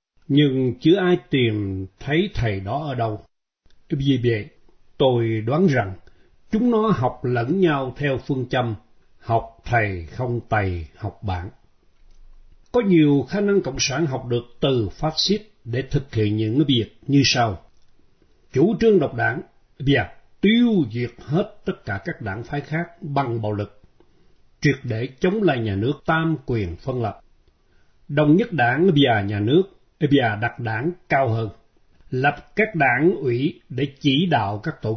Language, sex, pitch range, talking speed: Vietnamese, male, 110-160 Hz, 160 wpm